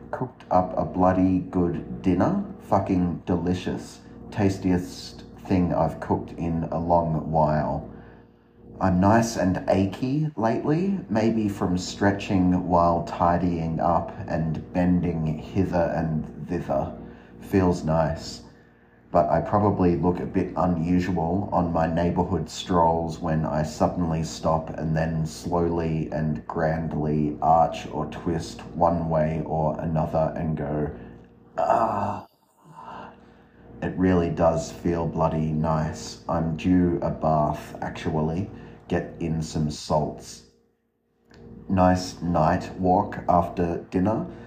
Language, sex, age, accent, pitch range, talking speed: English, male, 30-49, Australian, 75-90 Hz, 115 wpm